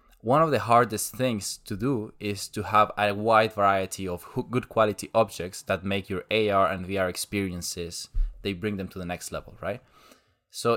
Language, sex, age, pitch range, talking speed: English, male, 20-39, 95-115 Hz, 185 wpm